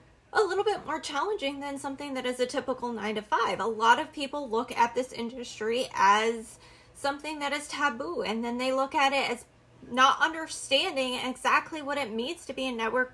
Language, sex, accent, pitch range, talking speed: English, female, American, 235-300 Hz, 200 wpm